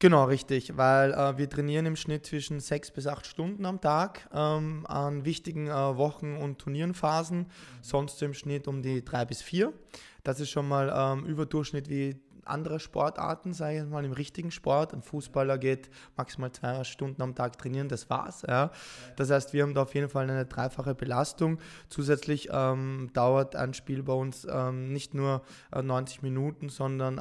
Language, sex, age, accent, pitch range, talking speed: German, male, 20-39, German, 130-150 Hz, 175 wpm